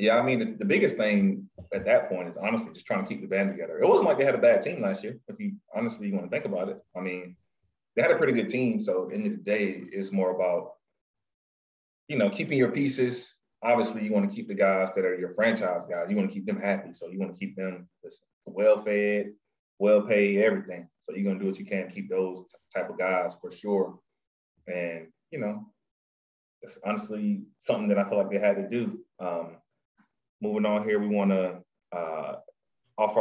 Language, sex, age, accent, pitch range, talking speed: English, male, 30-49, American, 95-150 Hz, 220 wpm